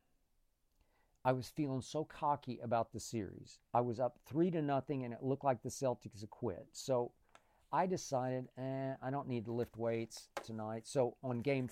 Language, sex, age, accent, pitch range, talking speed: English, male, 50-69, American, 105-130 Hz, 180 wpm